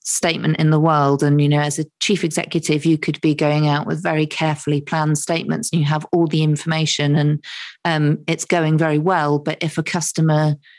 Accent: British